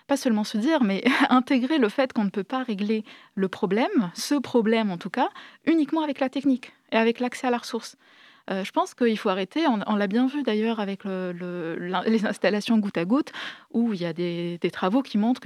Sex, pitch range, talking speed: female, 200-265 Hz, 230 wpm